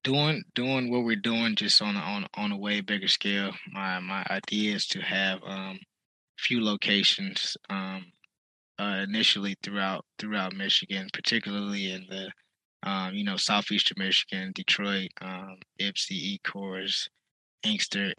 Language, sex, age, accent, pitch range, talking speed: English, male, 20-39, American, 100-120 Hz, 140 wpm